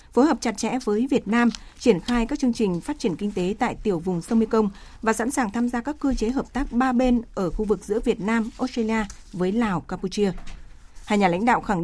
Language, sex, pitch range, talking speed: Vietnamese, female, 195-235 Hz, 245 wpm